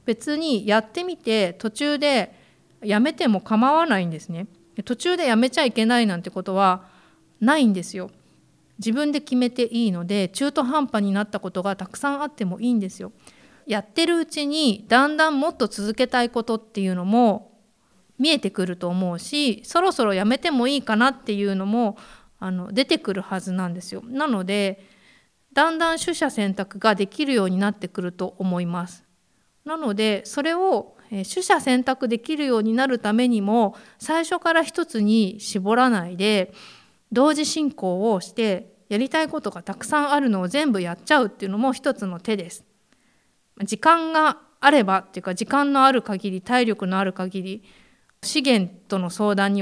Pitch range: 195-270 Hz